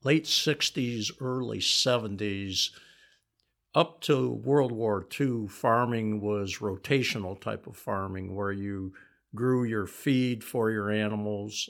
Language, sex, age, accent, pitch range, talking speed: English, male, 60-79, American, 100-115 Hz, 120 wpm